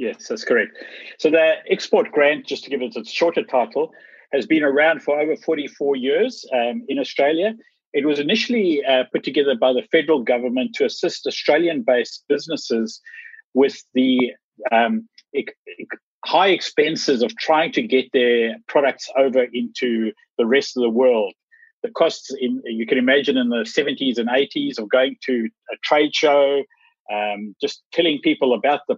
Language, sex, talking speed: English, male, 160 wpm